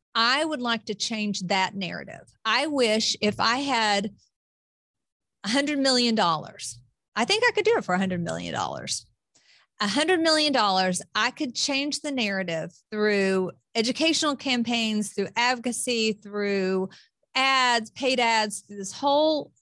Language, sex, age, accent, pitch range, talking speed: English, female, 40-59, American, 210-280 Hz, 145 wpm